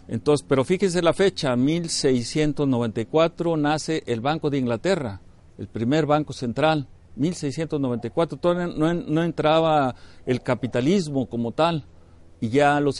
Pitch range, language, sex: 115-155 Hz, Spanish, male